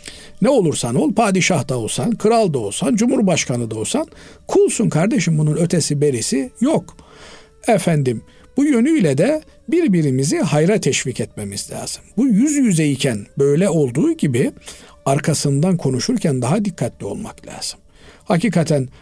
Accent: native